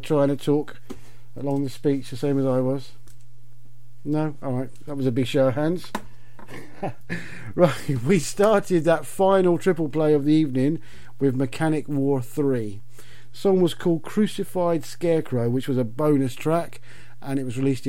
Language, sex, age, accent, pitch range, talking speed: English, male, 50-69, British, 125-155 Hz, 160 wpm